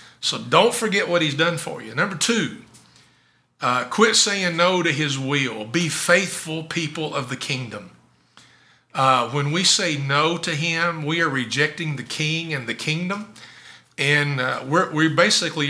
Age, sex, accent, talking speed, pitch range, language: 40-59, male, American, 165 wpm, 140-175 Hz, English